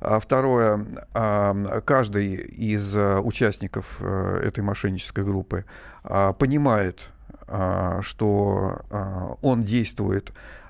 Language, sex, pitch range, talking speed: Russian, male, 100-125 Hz, 60 wpm